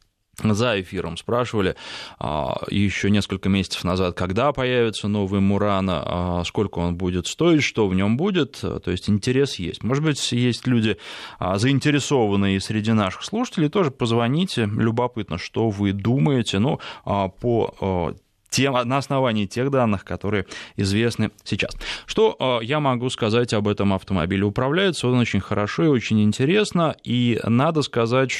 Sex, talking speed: male, 135 wpm